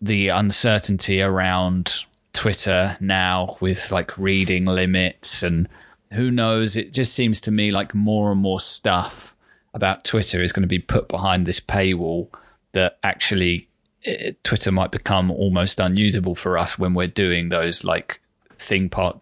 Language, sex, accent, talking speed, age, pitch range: English, male, British, 150 wpm, 20-39, 90-105 Hz